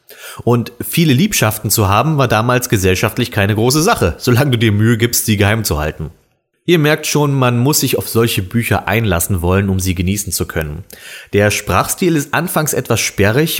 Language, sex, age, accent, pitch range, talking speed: German, male, 30-49, German, 95-135 Hz, 185 wpm